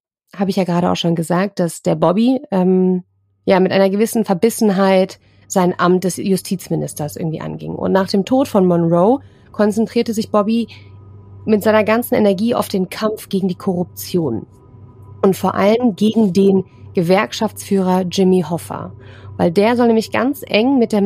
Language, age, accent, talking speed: German, 30-49, German, 160 wpm